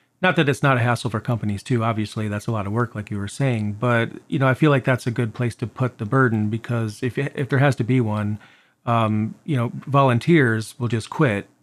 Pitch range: 120-145 Hz